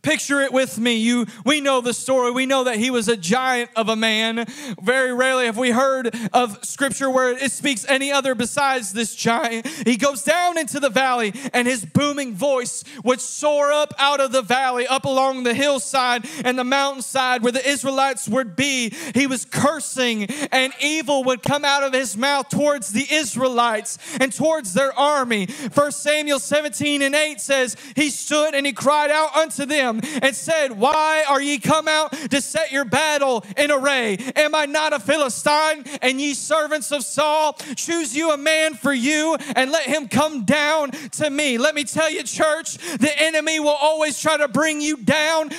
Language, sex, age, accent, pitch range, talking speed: English, male, 30-49, American, 255-305 Hz, 190 wpm